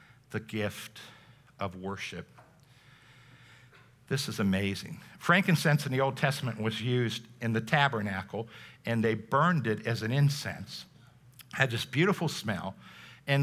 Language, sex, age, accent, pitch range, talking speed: English, male, 60-79, American, 110-140 Hz, 135 wpm